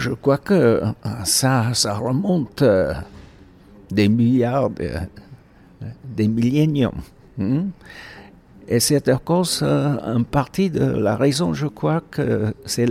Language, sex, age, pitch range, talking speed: French, male, 60-79, 100-140 Hz, 125 wpm